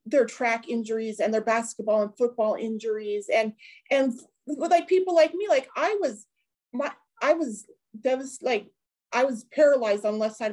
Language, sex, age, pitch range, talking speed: English, female, 40-59, 235-345 Hz, 170 wpm